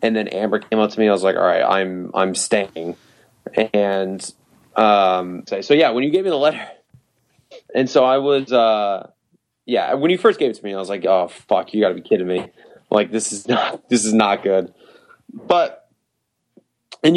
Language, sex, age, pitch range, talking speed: English, male, 20-39, 95-120 Hz, 205 wpm